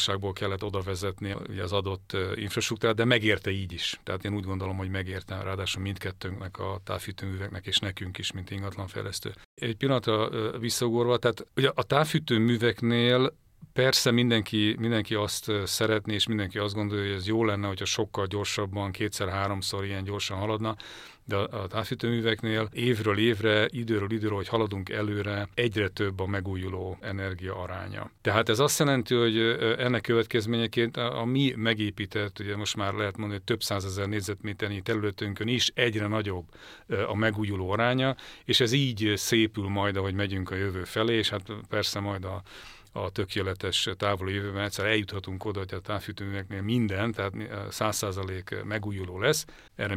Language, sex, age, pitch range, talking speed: English, male, 40-59, 95-110 Hz, 150 wpm